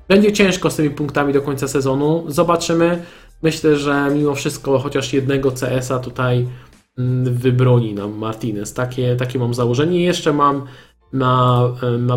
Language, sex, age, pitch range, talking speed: Polish, male, 20-39, 125-155 Hz, 140 wpm